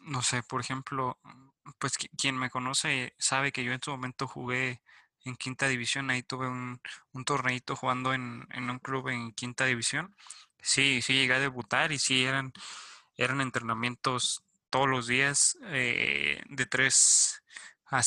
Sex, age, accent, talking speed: male, 20-39, Mexican, 165 wpm